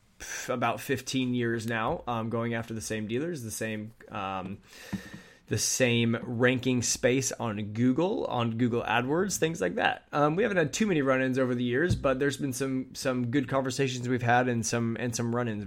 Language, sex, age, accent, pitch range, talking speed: English, male, 20-39, American, 110-125 Hz, 190 wpm